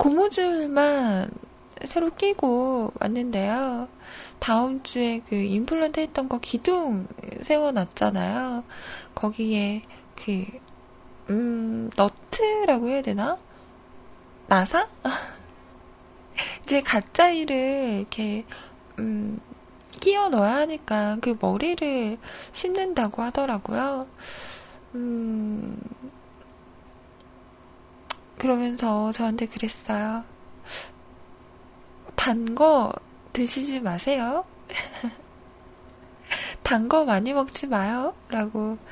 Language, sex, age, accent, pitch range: Korean, female, 20-39, native, 215-280 Hz